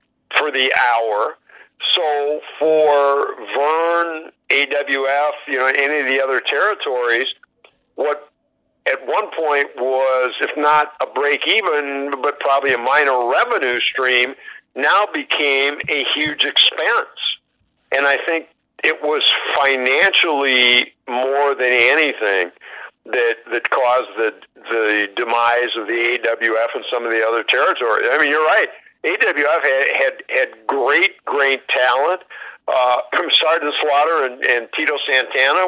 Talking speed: 130 wpm